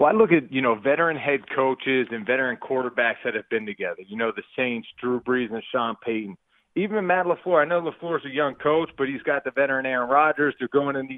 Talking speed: 235 wpm